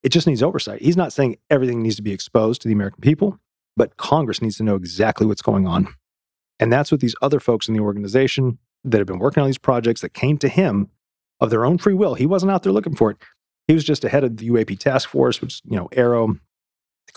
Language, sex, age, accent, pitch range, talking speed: English, male, 40-59, American, 100-135 Hz, 250 wpm